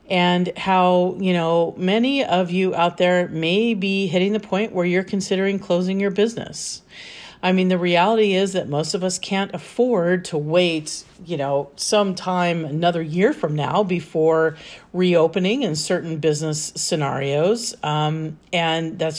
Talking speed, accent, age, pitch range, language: 155 wpm, American, 40-59, 165-205 Hz, English